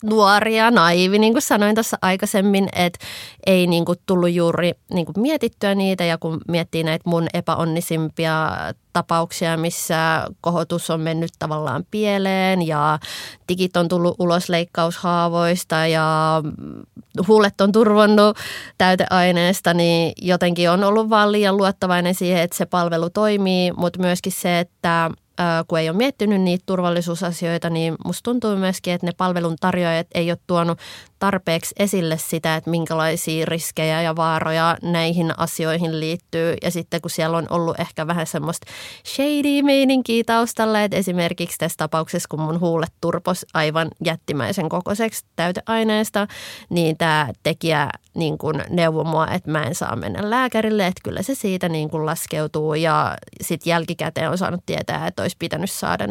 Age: 20-39